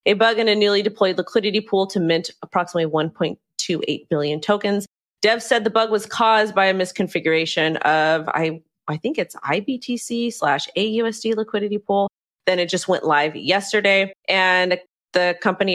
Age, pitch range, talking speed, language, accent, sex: 30-49, 165-205 Hz, 160 wpm, English, American, female